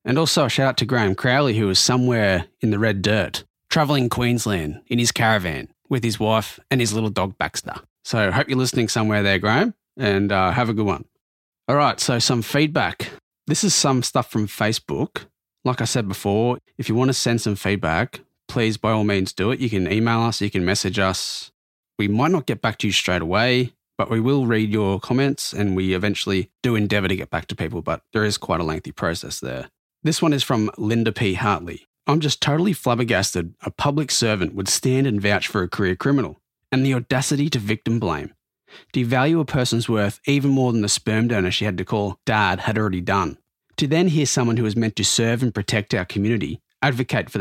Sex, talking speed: male, 220 wpm